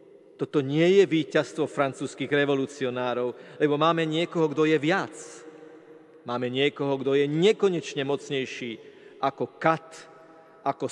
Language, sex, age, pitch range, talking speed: Slovak, male, 40-59, 130-165 Hz, 115 wpm